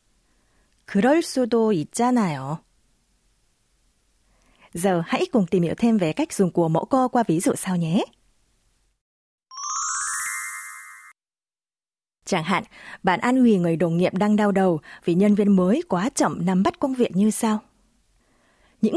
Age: 20-39